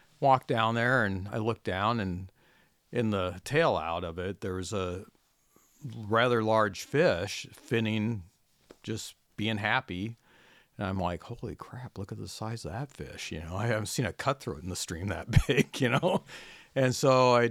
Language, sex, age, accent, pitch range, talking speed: English, male, 50-69, American, 95-115 Hz, 180 wpm